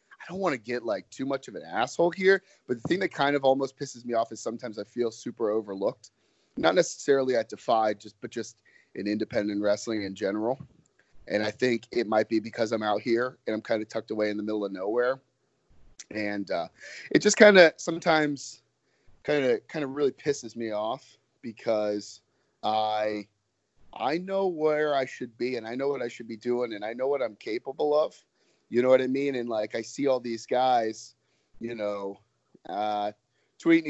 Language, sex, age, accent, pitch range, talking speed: English, male, 30-49, American, 115-160 Hz, 205 wpm